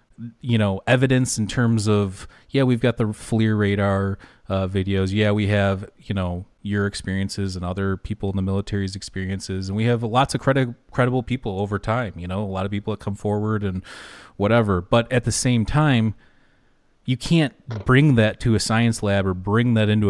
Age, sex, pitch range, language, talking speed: 30-49, male, 95-120 Hz, English, 195 wpm